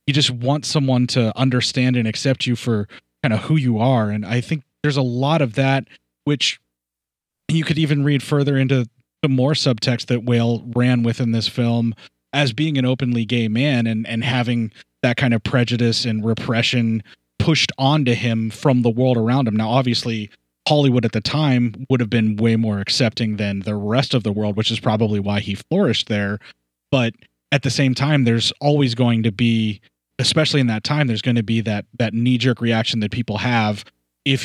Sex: male